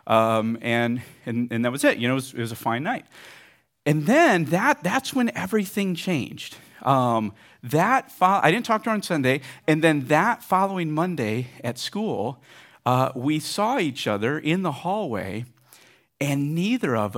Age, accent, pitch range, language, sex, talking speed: 50-69, American, 130-215 Hz, English, male, 180 wpm